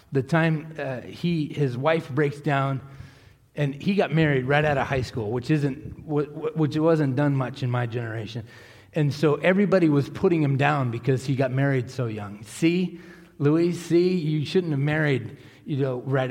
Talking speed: 190 wpm